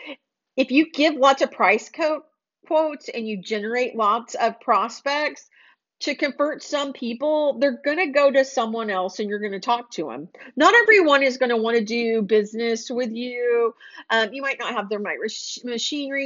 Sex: female